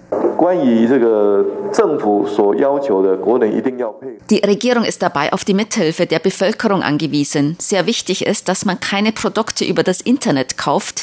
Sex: female